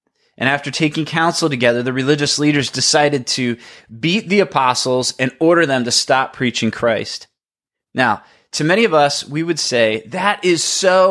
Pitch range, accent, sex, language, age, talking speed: 120-160 Hz, American, male, English, 20-39, 165 wpm